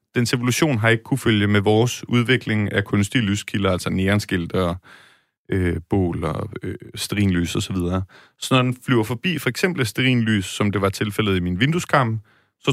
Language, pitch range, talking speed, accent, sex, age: Danish, 100-125 Hz, 170 wpm, native, male, 30-49